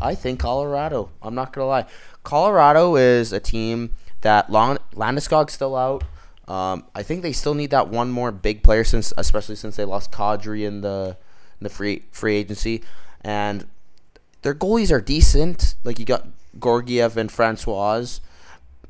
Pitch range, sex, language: 85-120 Hz, male, English